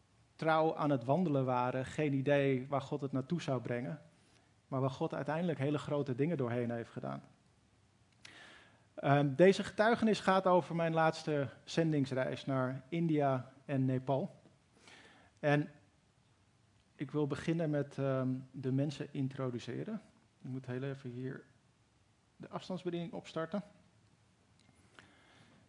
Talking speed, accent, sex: 115 wpm, Dutch, male